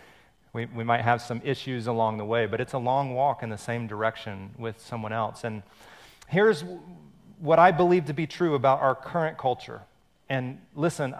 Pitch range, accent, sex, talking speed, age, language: 120-175 Hz, American, male, 190 wpm, 40-59, English